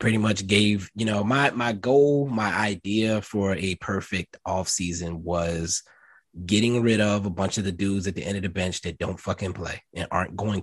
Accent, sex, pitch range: American, male, 85-105 Hz